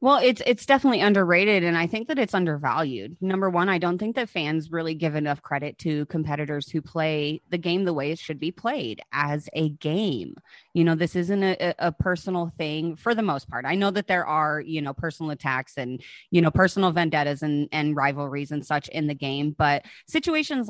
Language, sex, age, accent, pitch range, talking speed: English, female, 30-49, American, 150-190 Hz, 210 wpm